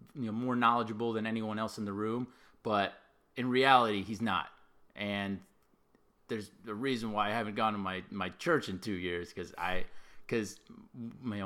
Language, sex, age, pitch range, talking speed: English, male, 30-49, 95-115 Hz, 180 wpm